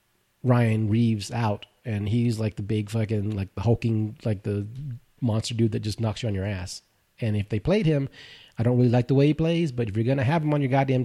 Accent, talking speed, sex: American, 245 wpm, male